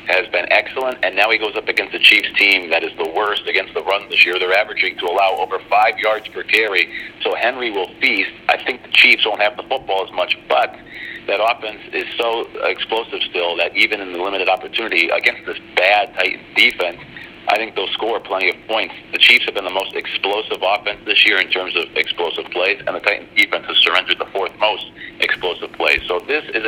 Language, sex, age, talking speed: English, male, 50-69, 220 wpm